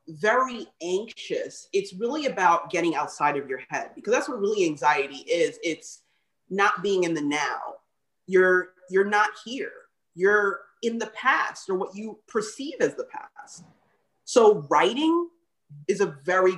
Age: 30-49